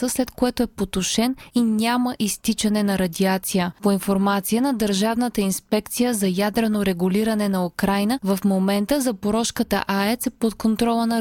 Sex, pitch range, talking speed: female, 195-235 Hz, 145 wpm